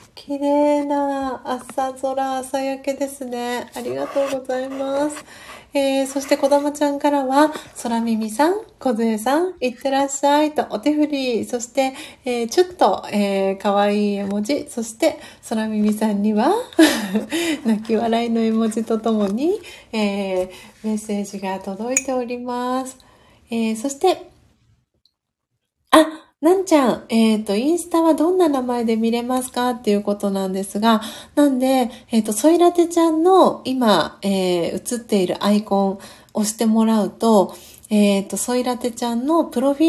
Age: 30-49